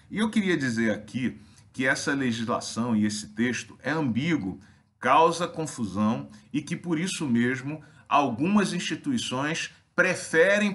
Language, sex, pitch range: Portuguese, male, 115-175 Hz